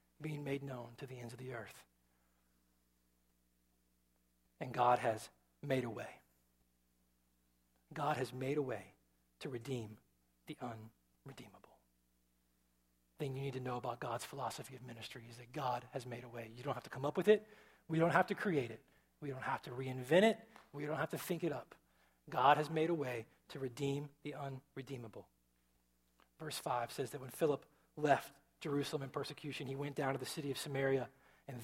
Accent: American